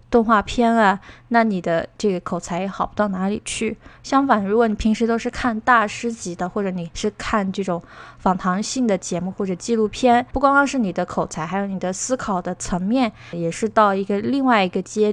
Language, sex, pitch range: Chinese, female, 190-235 Hz